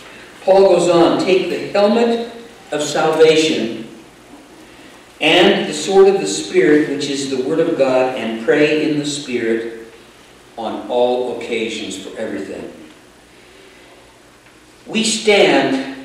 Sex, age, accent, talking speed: male, 50-69, American, 120 wpm